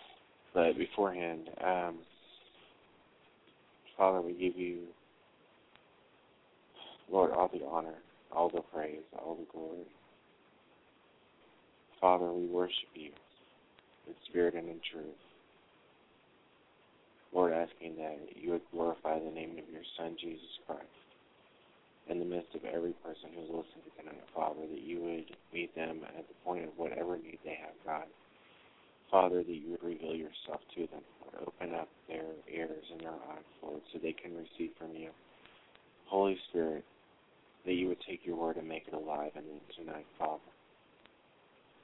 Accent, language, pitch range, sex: American, English, 80-90 Hz, male